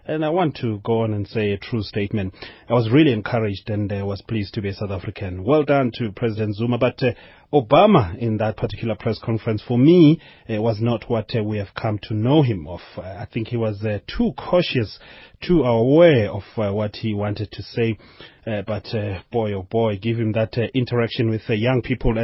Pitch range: 110-130 Hz